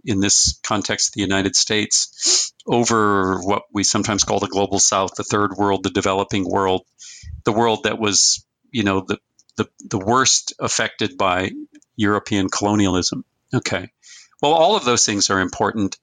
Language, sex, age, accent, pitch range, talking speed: English, male, 50-69, American, 100-125 Hz, 155 wpm